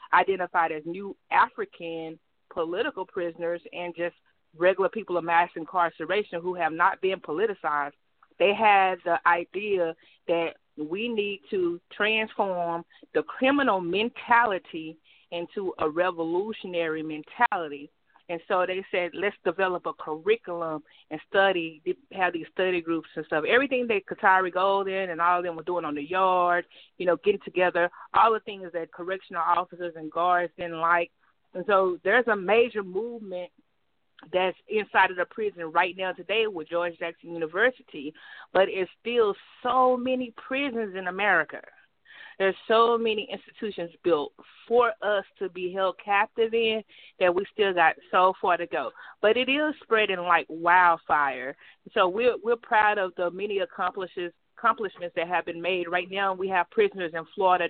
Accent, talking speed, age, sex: American, 155 wpm, 30-49, female